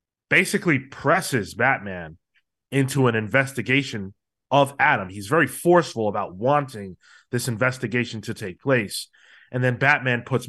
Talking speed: 125 wpm